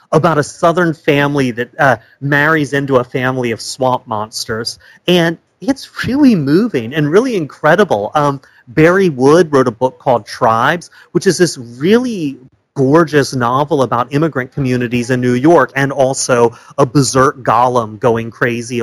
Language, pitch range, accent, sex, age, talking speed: English, 120-155 Hz, American, male, 30-49, 150 wpm